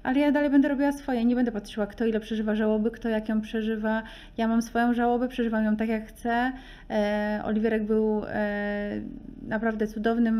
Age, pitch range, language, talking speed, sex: 30-49, 215-245 Hz, Polish, 175 wpm, female